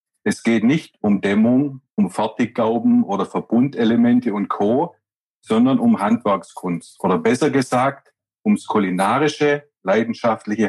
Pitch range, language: 110-155 Hz, German